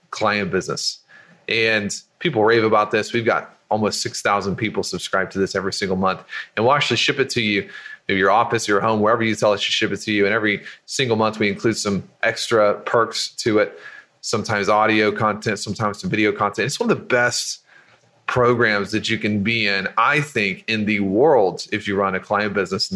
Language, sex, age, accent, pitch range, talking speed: English, male, 30-49, American, 100-110 Hz, 210 wpm